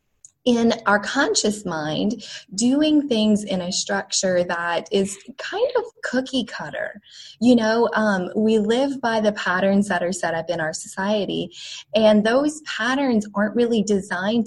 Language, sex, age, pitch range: English, female, 20-39, 180-230 Hz